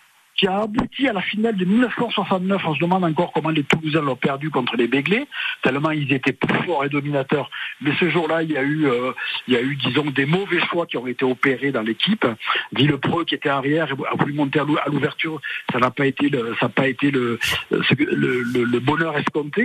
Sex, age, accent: male, 60-79, French